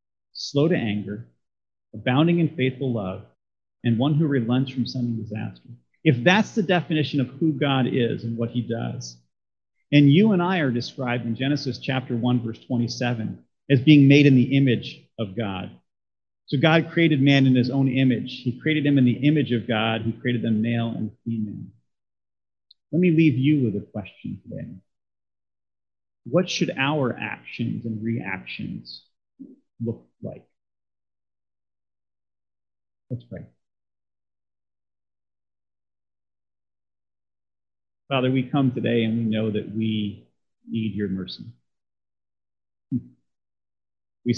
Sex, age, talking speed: male, 30-49, 135 wpm